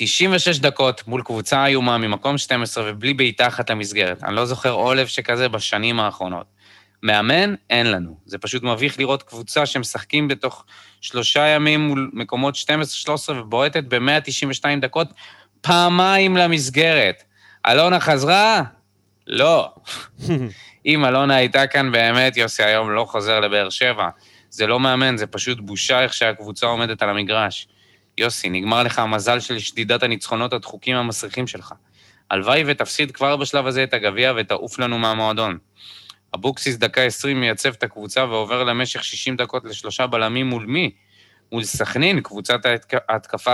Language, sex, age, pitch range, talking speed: Hebrew, male, 20-39, 110-145 Hz, 140 wpm